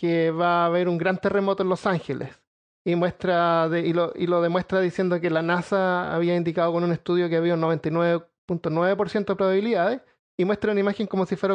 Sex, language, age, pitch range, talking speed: male, Spanish, 30-49, 175-205 Hz, 210 wpm